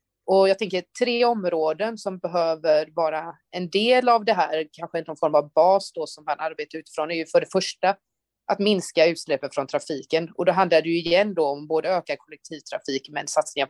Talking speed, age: 195 wpm, 30-49